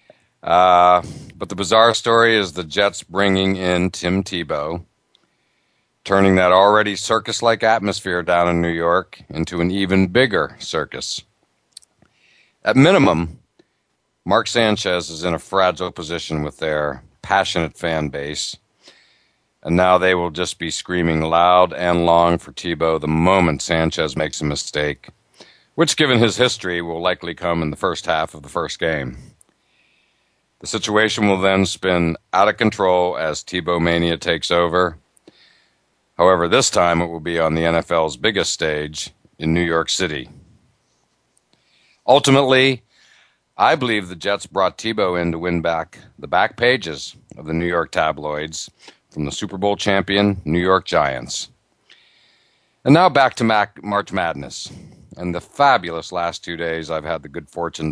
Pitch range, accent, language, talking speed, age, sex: 80-95 Hz, American, English, 150 wpm, 60-79, male